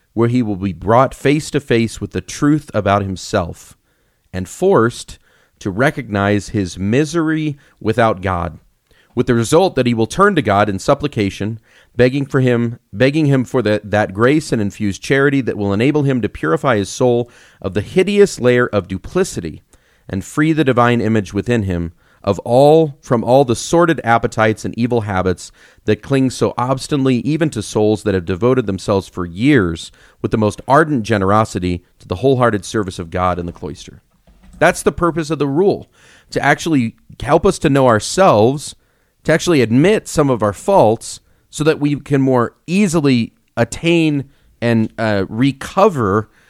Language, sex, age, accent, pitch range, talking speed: English, male, 40-59, American, 100-140 Hz, 170 wpm